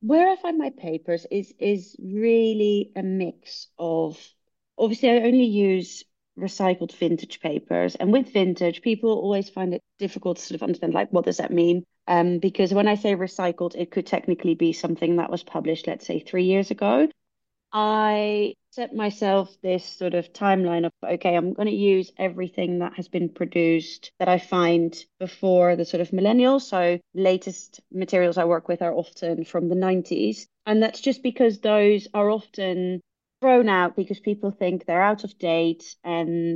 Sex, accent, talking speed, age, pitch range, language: female, British, 175 wpm, 30-49, 170-210 Hz, English